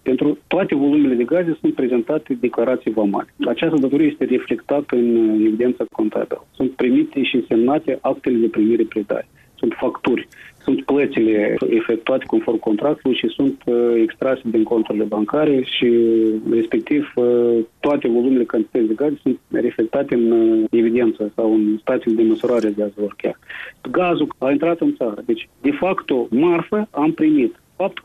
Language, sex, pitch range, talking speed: Romanian, male, 115-165 Hz, 145 wpm